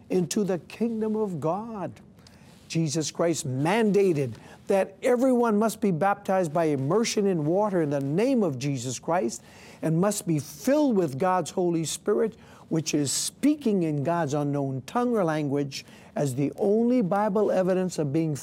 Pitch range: 160-225 Hz